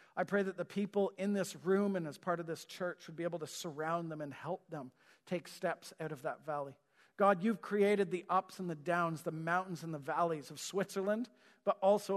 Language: English